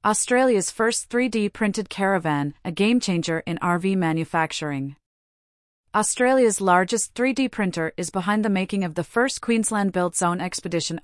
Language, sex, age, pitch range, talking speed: English, female, 40-59, 170-205 Hz, 125 wpm